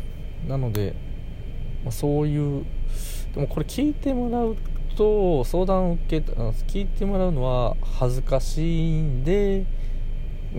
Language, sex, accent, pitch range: Japanese, male, native, 105-150 Hz